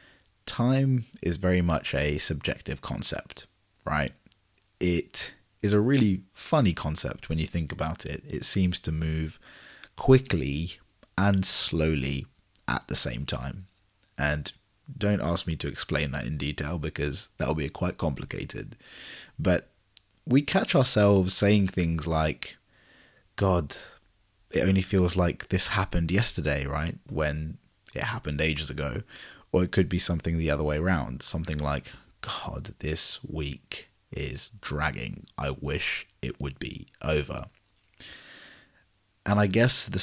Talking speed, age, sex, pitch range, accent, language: 135 wpm, 30-49, male, 75-95 Hz, British, English